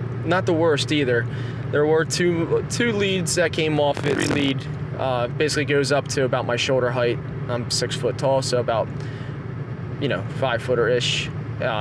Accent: American